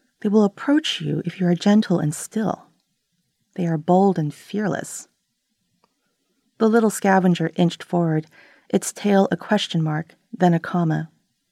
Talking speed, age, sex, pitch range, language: 145 wpm, 30-49, female, 165-200 Hz, English